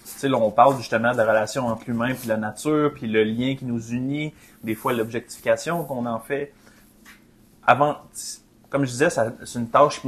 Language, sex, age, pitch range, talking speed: French, male, 30-49, 115-140 Hz, 195 wpm